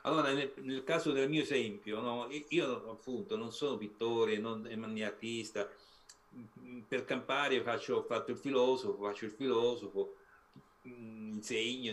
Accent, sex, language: native, male, Italian